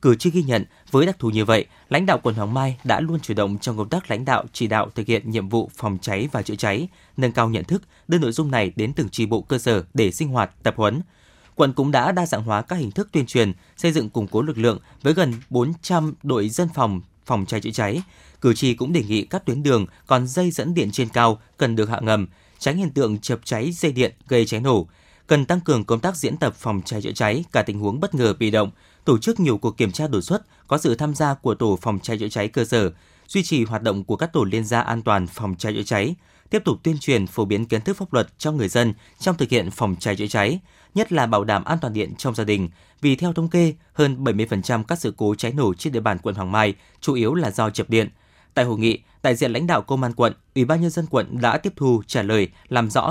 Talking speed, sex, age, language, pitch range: 265 wpm, male, 20-39, Vietnamese, 105-150 Hz